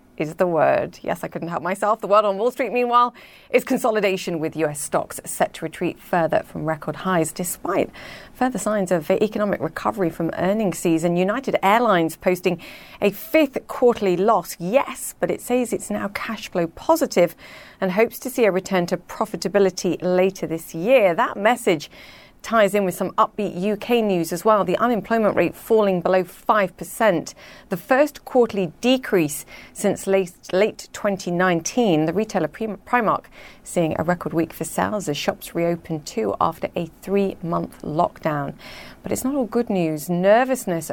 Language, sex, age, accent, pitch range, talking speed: English, female, 40-59, British, 175-220 Hz, 165 wpm